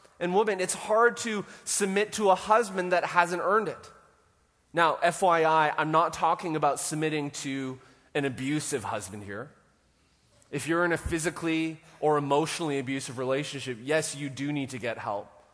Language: English